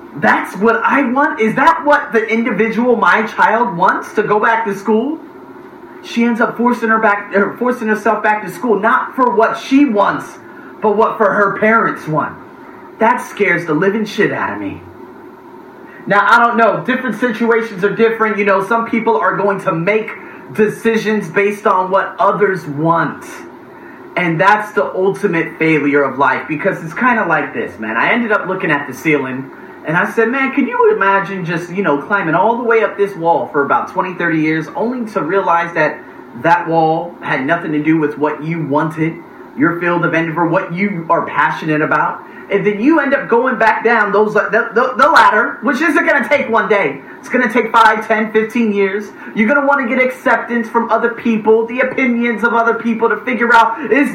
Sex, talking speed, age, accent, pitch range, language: male, 205 wpm, 30-49, American, 190-240 Hz, English